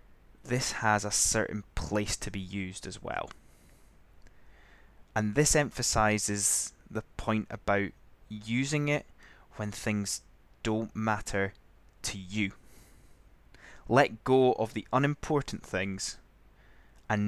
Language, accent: English, British